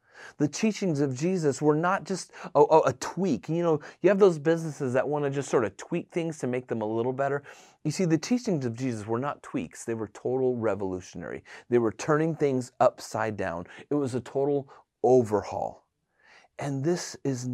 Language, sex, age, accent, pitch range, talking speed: English, male, 30-49, American, 115-165 Hz, 200 wpm